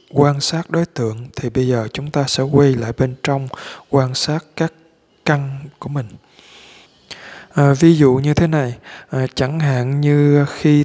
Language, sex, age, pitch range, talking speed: Vietnamese, male, 20-39, 130-155 Hz, 160 wpm